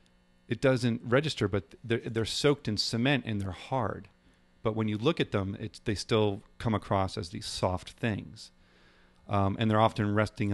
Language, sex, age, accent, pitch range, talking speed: English, male, 40-59, American, 90-115 Hz, 180 wpm